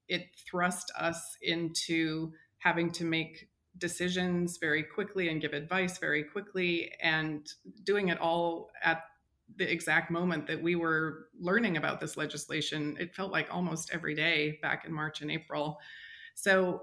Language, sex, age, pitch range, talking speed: English, female, 30-49, 160-190 Hz, 150 wpm